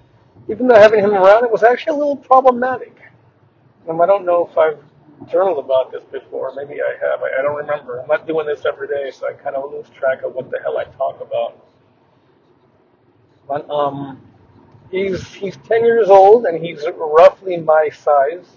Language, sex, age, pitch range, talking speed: English, male, 40-59, 130-170 Hz, 190 wpm